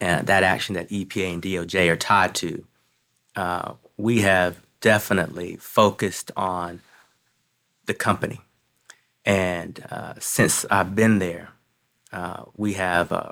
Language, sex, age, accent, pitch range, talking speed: English, male, 30-49, American, 90-105 Hz, 125 wpm